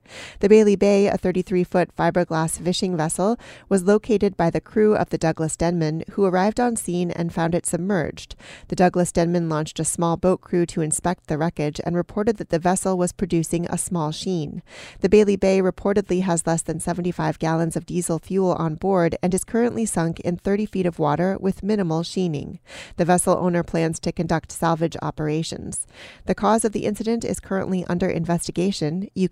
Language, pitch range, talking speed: English, 165-200 Hz, 185 wpm